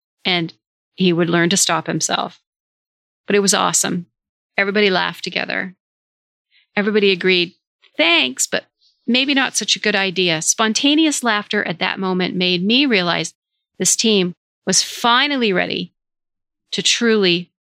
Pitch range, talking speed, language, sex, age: 175-225 Hz, 135 wpm, English, female, 40-59